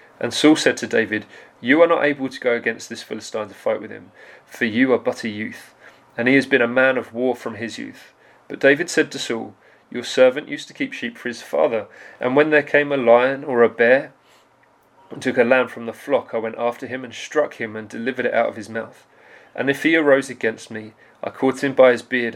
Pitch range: 115-135 Hz